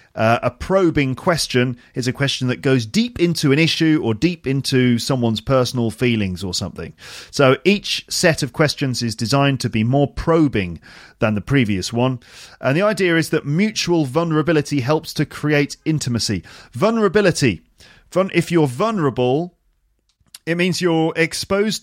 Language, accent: English, British